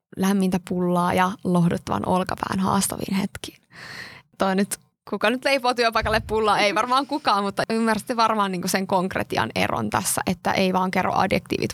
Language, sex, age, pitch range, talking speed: Finnish, female, 20-39, 185-205 Hz, 150 wpm